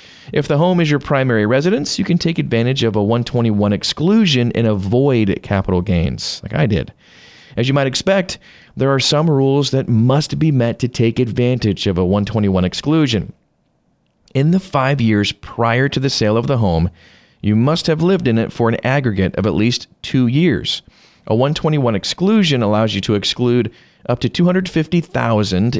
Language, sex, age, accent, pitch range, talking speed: English, male, 40-59, American, 105-150 Hz, 175 wpm